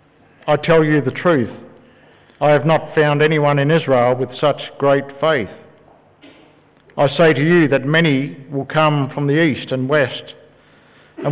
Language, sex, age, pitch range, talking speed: English, male, 60-79, 130-155 Hz, 160 wpm